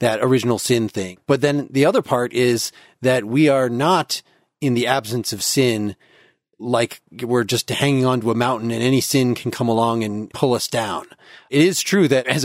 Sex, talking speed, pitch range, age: male, 200 wpm, 115-145 Hz, 30-49